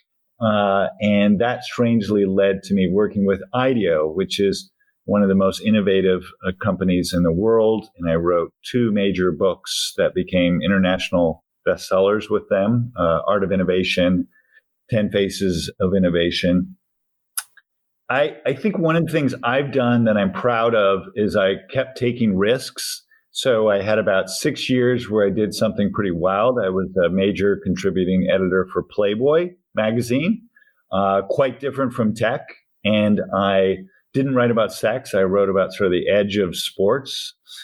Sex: male